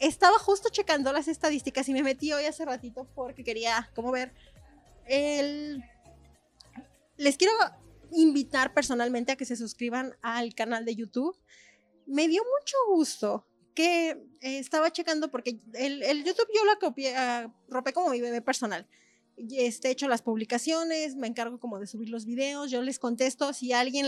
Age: 20-39